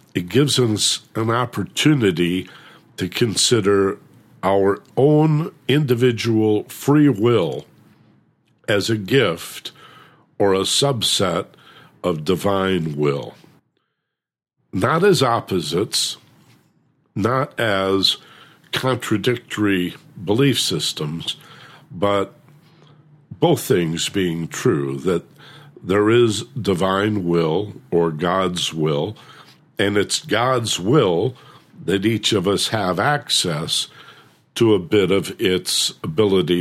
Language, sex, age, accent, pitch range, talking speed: English, male, 50-69, American, 90-125 Hz, 95 wpm